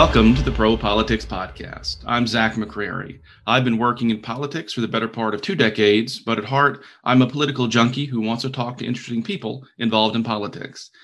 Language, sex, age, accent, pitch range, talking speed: English, male, 40-59, American, 110-130 Hz, 200 wpm